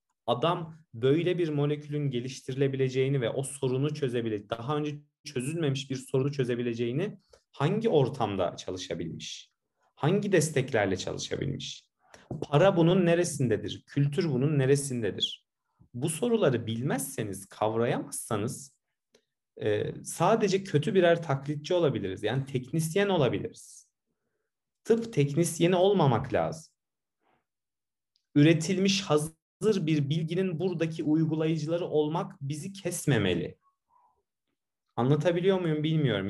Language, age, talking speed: Turkish, 40-59, 95 wpm